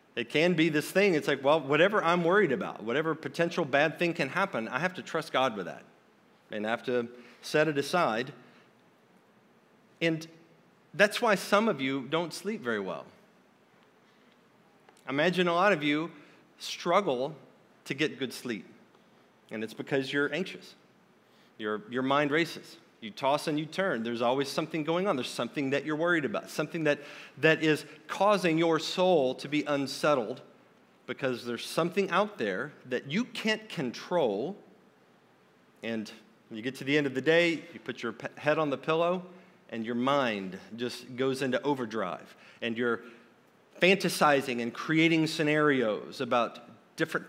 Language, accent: English, American